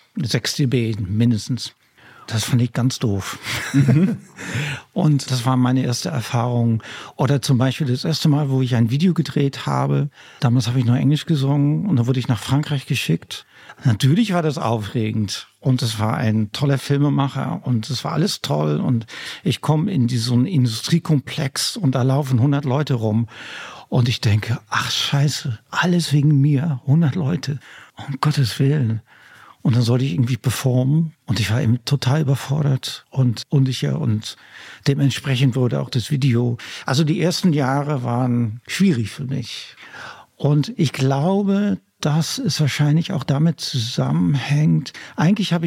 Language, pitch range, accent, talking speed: German, 125-155 Hz, German, 155 wpm